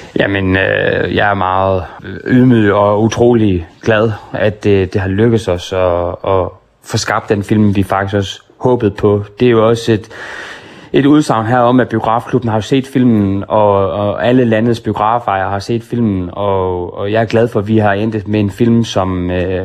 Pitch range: 95-110 Hz